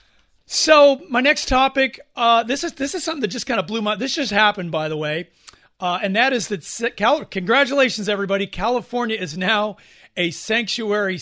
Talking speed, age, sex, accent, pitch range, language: 185 wpm, 40-59, male, American, 180-230 Hz, English